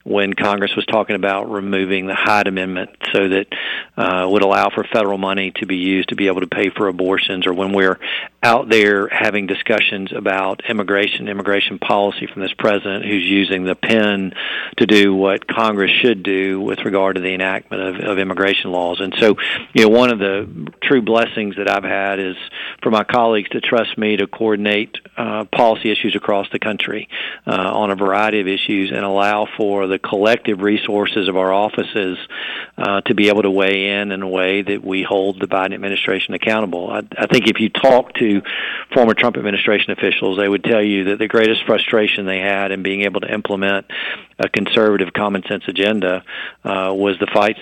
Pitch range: 95-105 Hz